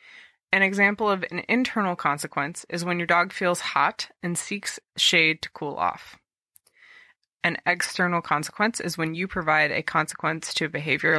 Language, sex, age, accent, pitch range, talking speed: English, female, 20-39, American, 155-190 Hz, 160 wpm